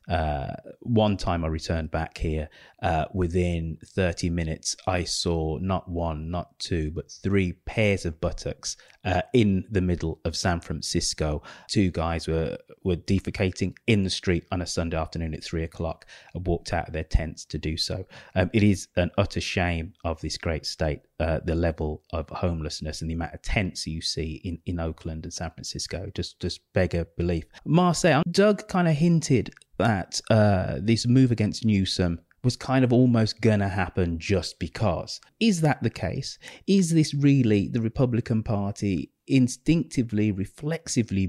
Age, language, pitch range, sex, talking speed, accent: 30-49, English, 85-110 Hz, male, 170 wpm, British